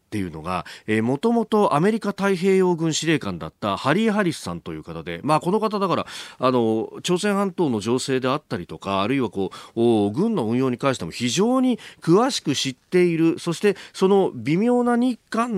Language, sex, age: Japanese, male, 40-59